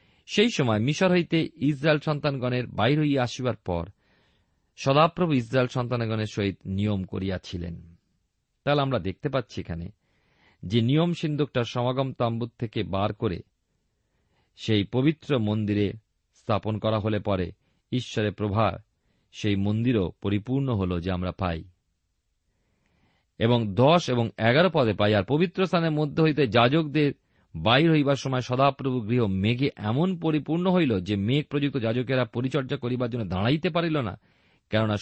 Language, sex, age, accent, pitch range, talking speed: Bengali, male, 40-59, native, 100-140 Hz, 105 wpm